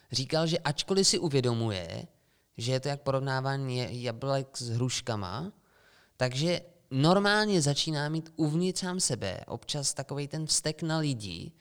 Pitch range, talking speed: 115-150 Hz, 135 wpm